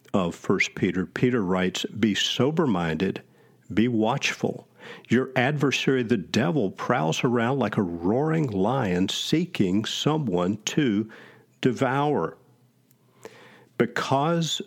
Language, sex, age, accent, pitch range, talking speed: English, male, 50-69, American, 95-135 Hz, 100 wpm